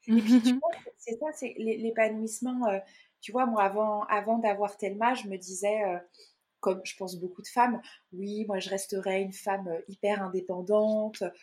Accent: French